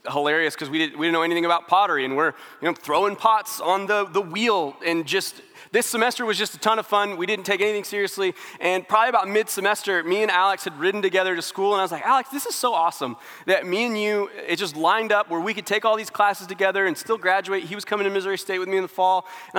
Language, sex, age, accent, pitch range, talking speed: English, male, 20-39, American, 175-215 Hz, 265 wpm